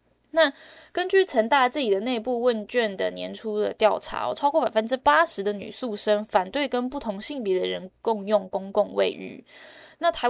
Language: Chinese